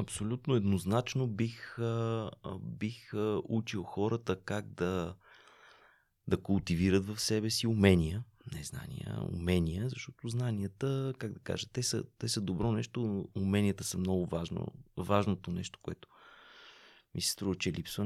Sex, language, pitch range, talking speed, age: male, Bulgarian, 95-120 Hz, 135 wpm, 30-49